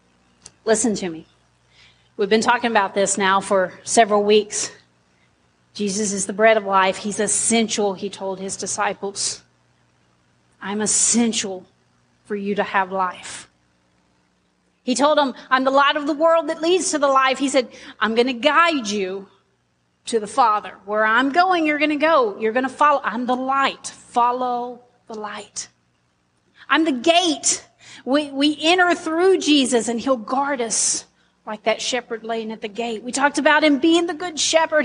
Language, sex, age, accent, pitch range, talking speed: English, female, 30-49, American, 190-260 Hz, 170 wpm